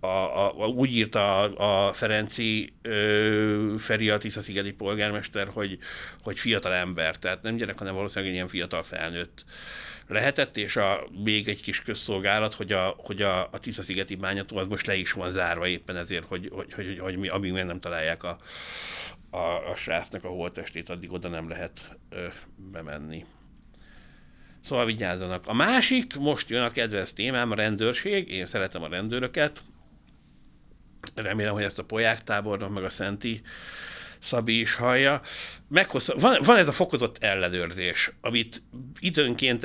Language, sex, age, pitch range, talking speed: Hungarian, male, 60-79, 90-115 Hz, 155 wpm